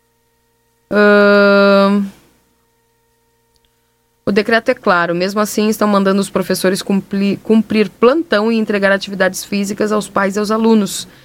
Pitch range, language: 175-215 Hz, Portuguese